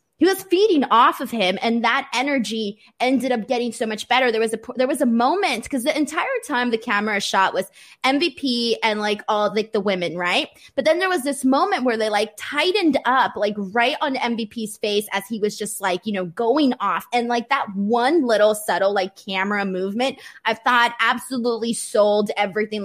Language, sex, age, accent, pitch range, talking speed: English, female, 20-39, American, 205-270 Hz, 200 wpm